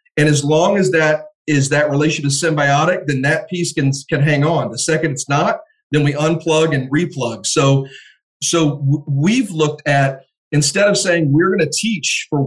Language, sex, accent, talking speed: English, male, American, 190 wpm